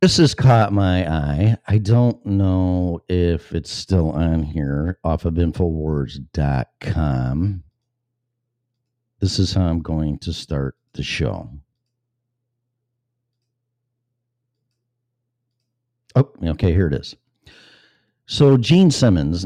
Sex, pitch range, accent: male, 85-120 Hz, American